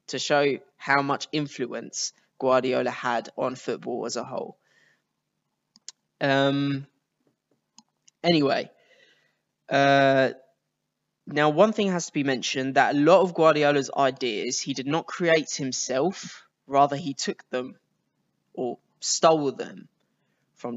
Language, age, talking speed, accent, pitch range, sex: English, 10-29, 120 wpm, British, 130-150 Hz, male